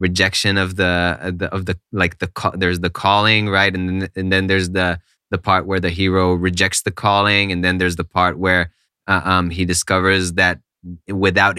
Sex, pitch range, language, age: male, 90-105 Hz, English, 20-39